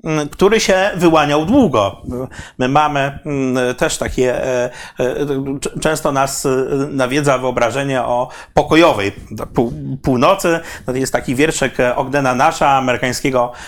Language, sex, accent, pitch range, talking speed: Polish, male, native, 130-155 Hz, 95 wpm